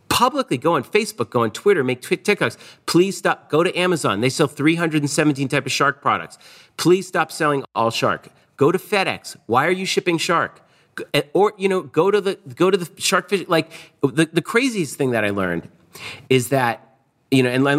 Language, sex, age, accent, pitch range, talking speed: English, male, 40-59, American, 120-170 Hz, 200 wpm